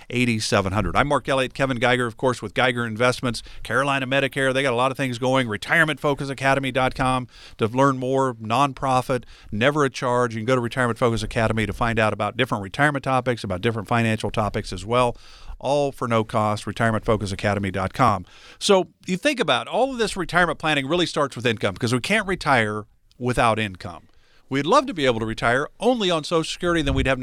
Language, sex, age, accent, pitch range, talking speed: English, male, 50-69, American, 110-140 Hz, 190 wpm